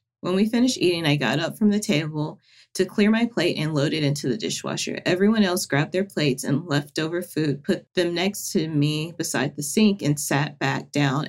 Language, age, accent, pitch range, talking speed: English, 30-49, American, 145-185 Hz, 215 wpm